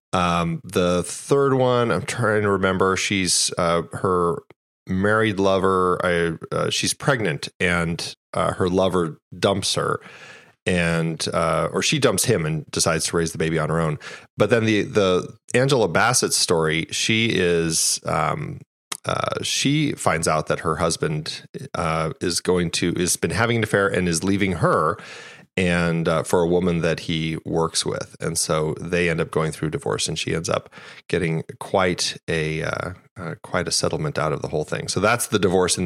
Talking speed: 180 wpm